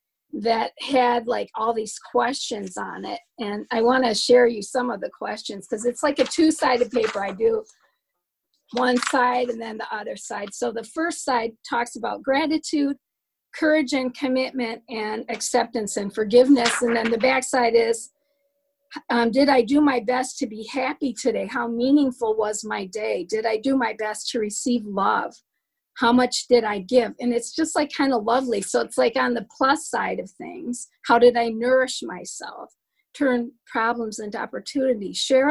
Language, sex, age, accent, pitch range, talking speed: English, female, 40-59, American, 230-270 Hz, 180 wpm